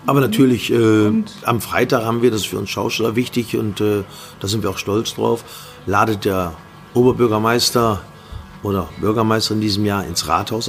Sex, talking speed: male, 175 wpm